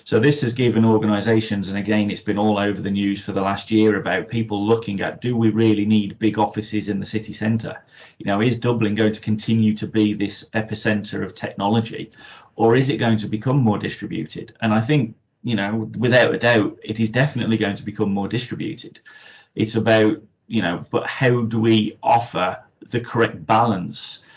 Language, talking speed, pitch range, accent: English, 195 wpm, 105-115 Hz, British